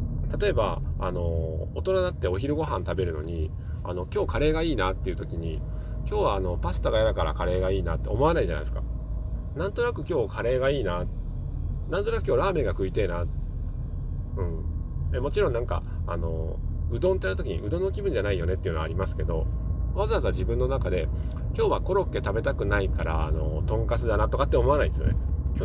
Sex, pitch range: male, 80-95 Hz